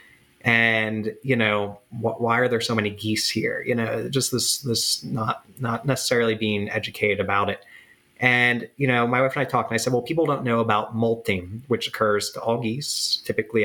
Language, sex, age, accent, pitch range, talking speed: English, male, 30-49, American, 105-120 Hz, 200 wpm